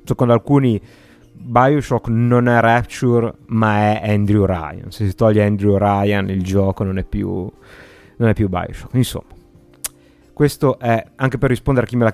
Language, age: Italian, 30-49